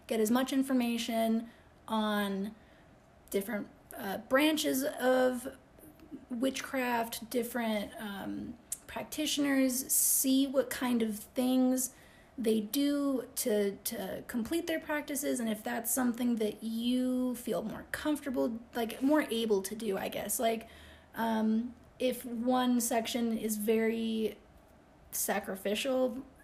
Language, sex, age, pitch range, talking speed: English, female, 30-49, 220-265 Hz, 110 wpm